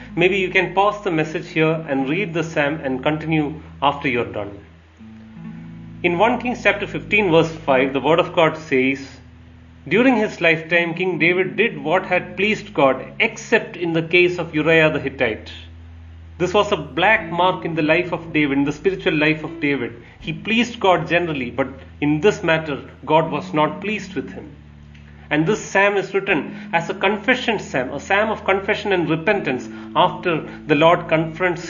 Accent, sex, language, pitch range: Indian, male, English, 135-195 Hz